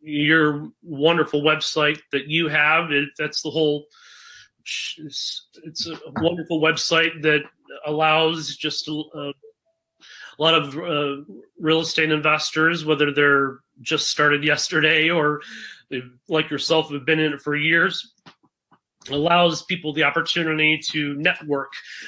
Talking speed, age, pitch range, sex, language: 120 wpm, 30-49, 145-155 Hz, male, English